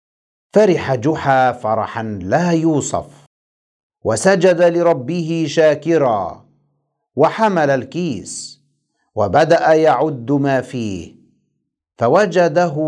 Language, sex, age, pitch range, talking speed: Arabic, male, 50-69, 130-195 Hz, 70 wpm